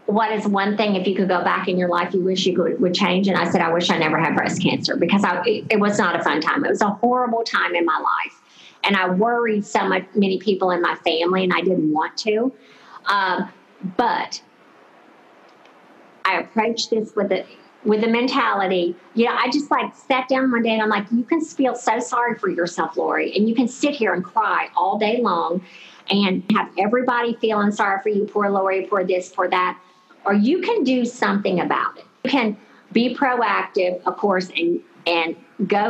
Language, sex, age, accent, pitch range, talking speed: English, female, 50-69, American, 185-235 Hz, 215 wpm